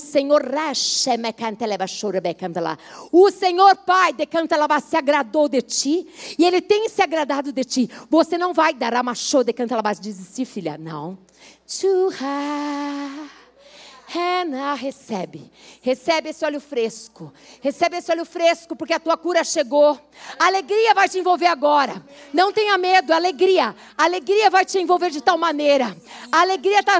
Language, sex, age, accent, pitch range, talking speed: Portuguese, female, 50-69, Brazilian, 250-345 Hz, 150 wpm